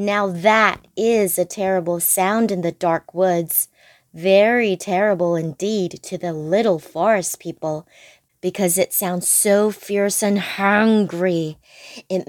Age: 20-39